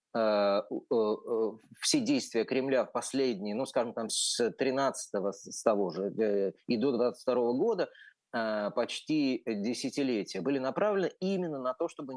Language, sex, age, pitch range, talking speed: Russian, male, 30-49, 115-170 Hz, 125 wpm